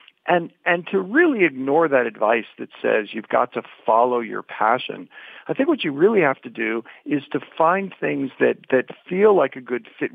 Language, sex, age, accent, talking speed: English, male, 50-69, American, 200 wpm